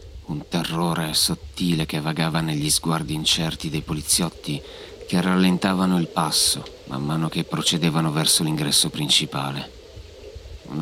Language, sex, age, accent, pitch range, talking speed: Italian, male, 40-59, native, 80-90 Hz, 120 wpm